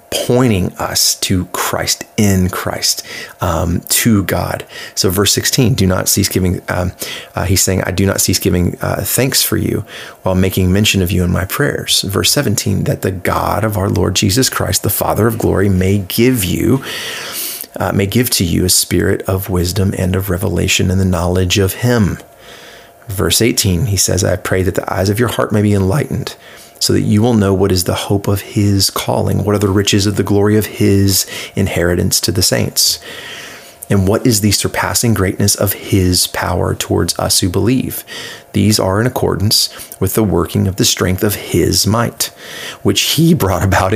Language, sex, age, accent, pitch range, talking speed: English, male, 30-49, American, 95-105 Hz, 190 wpm